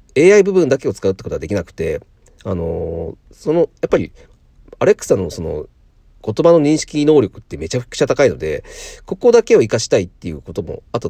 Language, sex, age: Japanese, male, 40-59